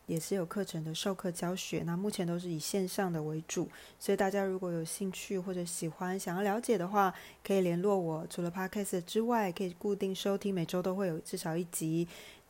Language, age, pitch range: Chinese, 20-39, 165-195 Hz